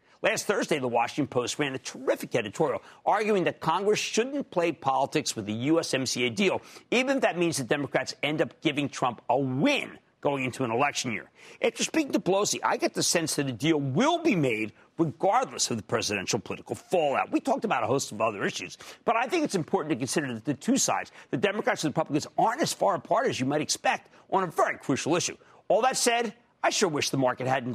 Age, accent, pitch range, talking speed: 50-69, American, 145-225 Hz, 220 wpm